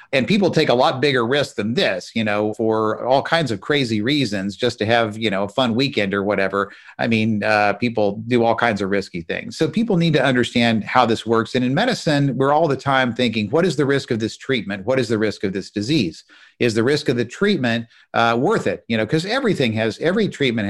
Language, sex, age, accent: English, male, 50-69, American